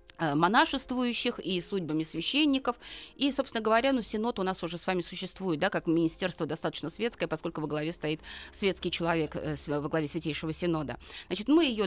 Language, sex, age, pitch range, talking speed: Russian, female, 30-49, 175-230 Hz, 170 wpm